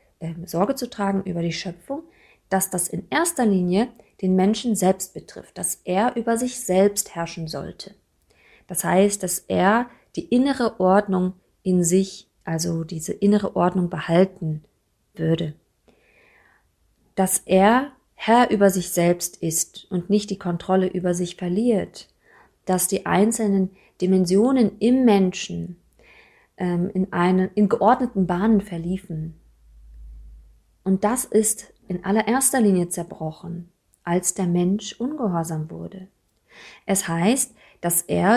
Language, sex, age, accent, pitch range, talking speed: German, female, 30-49, German, 175-215 Hz, 125 wpm